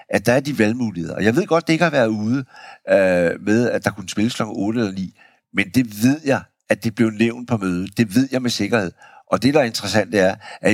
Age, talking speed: 60-79, 265 wpm